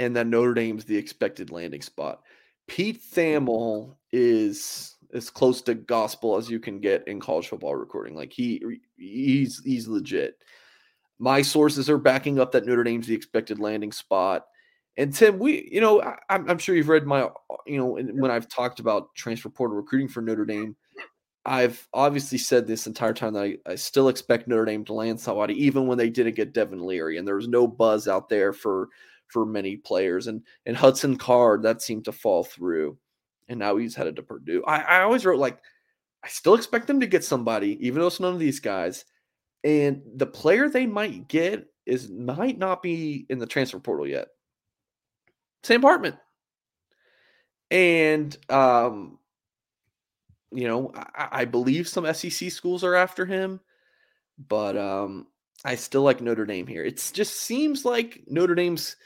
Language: English